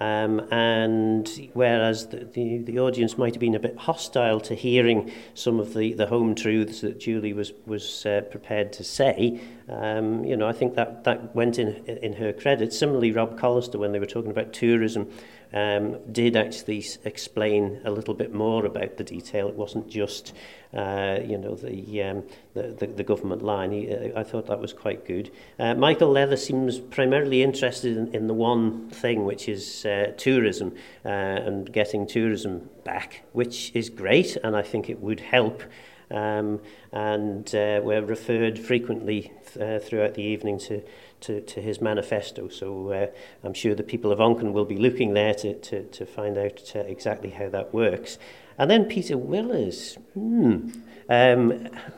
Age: 40-59